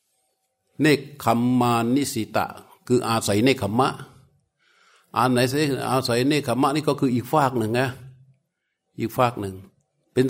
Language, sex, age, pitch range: Thai, male, 60-79, 110-135 Hz